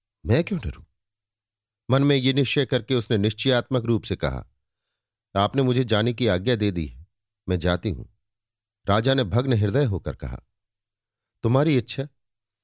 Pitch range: 95-120 Hz